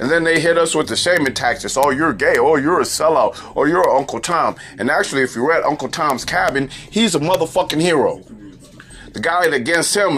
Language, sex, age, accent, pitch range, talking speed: English, male, 30-49, American, 130-175 Hz, 225 wpm